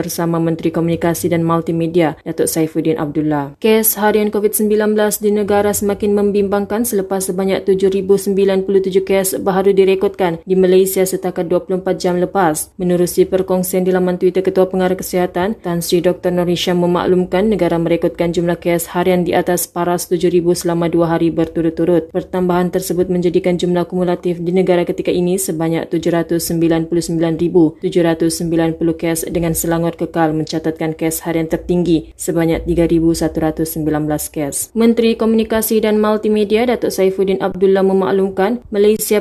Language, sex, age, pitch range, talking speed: Malay, female, 20-39, 170-190 Hz, 130 wpm